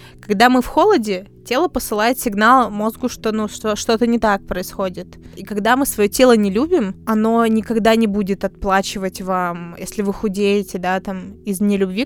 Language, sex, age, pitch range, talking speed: Russian, female, 20-39, 185-220 Hz, 180 wpm